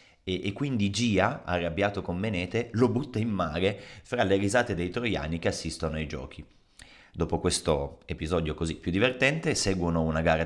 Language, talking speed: Italian, 165 wpm